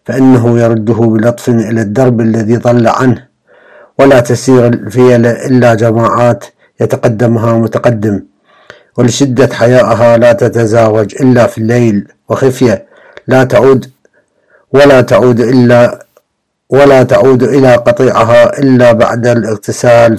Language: Arabic